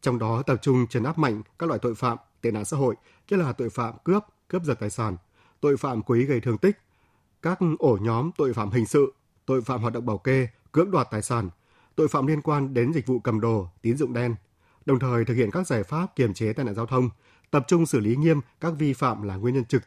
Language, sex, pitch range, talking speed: Vietnamese, male, 115-140 Hz, 255 wpm